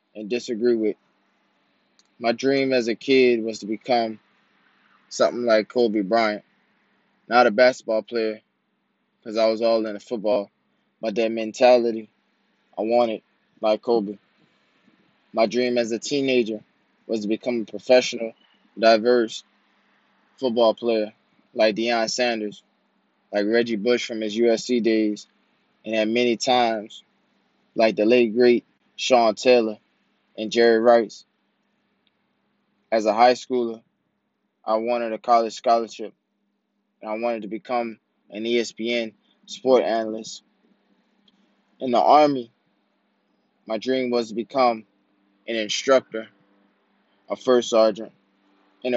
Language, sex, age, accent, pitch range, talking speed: English, male, 20-39, American, 110-125 Hz, 125 wpm